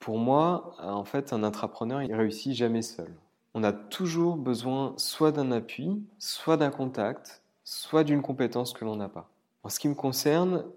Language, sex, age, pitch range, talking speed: French, male, 20-39, 110-140 Hz, 180 wpm